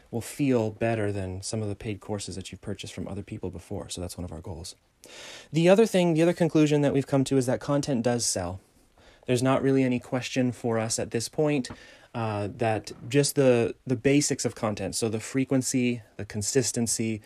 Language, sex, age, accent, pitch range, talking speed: English, male, 30-49, American, 110-135 Hz, 210 wpm